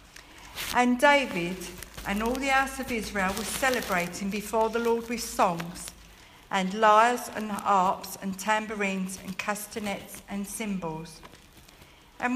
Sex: female